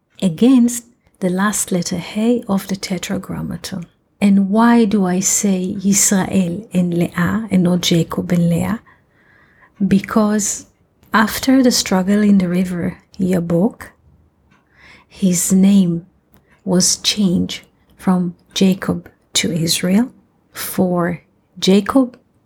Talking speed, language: 105 wpm, English